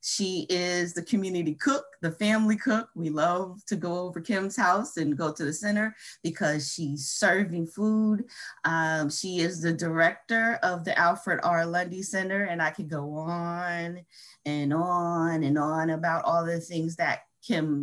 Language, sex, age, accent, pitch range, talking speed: English, female, 30-49, American, 155-205 Hz, 170 wpm